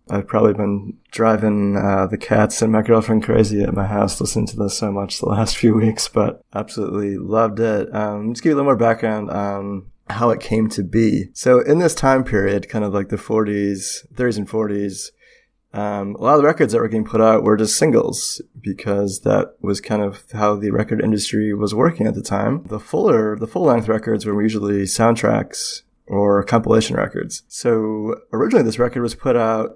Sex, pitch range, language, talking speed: male, 100-110 Hz, English, 205 wpm